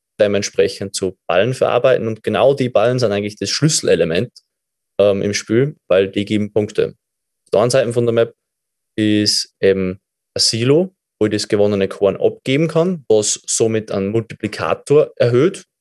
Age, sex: 20-39, male